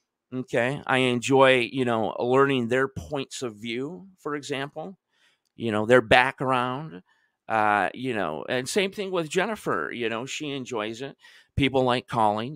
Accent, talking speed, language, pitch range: American, 155 wpm, English, 125-165 Hz